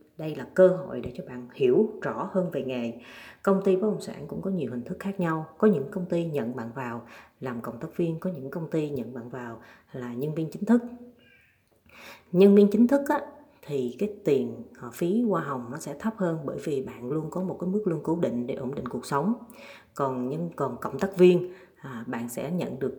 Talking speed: 225 wpm